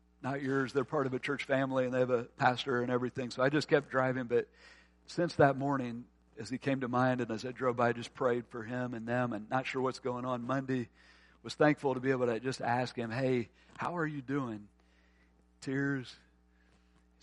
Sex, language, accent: male, English, American